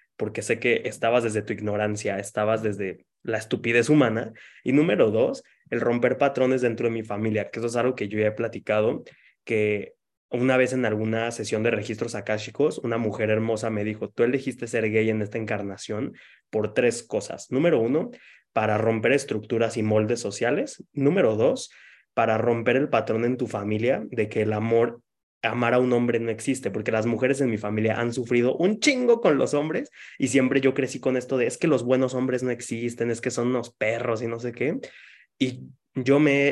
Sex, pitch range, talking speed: male, 110-125 Hz, 200 wpm